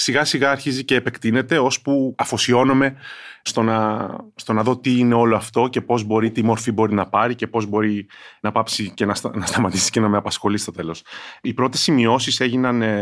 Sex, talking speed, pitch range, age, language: male, 190 wpm, 100-125 Hz, 30-49, Greek